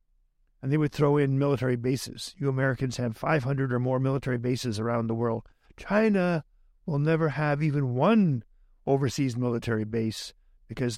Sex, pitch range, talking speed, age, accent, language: male, 125-170 Hz, 155 wpm, 50-69, American, English